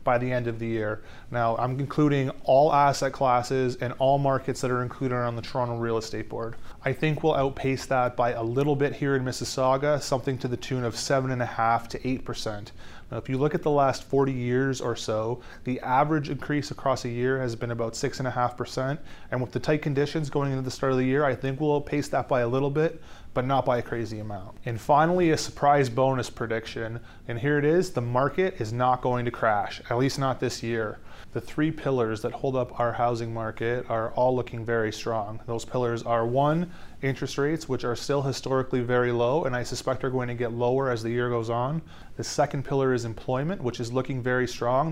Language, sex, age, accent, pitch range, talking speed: English, male, 30-49, American, 120-135 Hz, 220 wpm